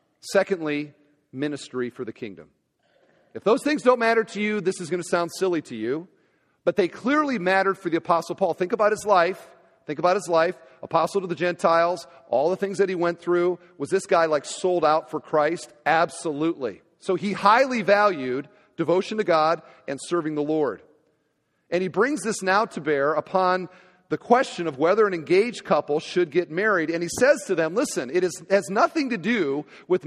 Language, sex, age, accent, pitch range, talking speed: English, male, 40-59, American, 160-220 Hz, 195 wpm